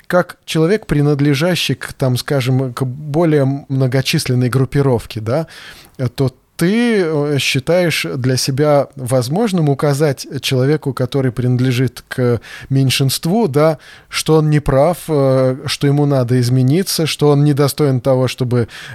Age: 20-39